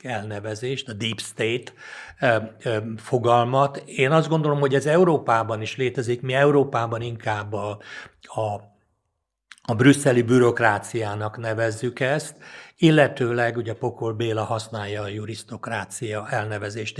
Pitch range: 110-135 Hz